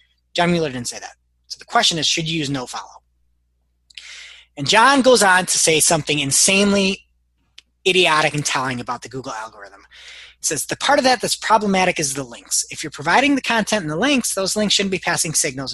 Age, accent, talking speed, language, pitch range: 20-39, American, 200 wpm, English, 155-265 Hz